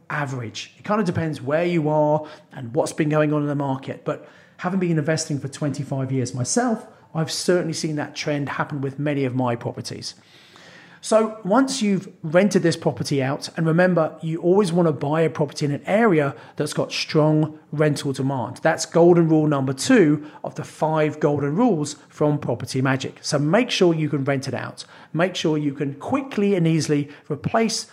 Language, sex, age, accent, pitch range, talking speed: English, male, 40-59, British, 140-170 Hz, 190 wpm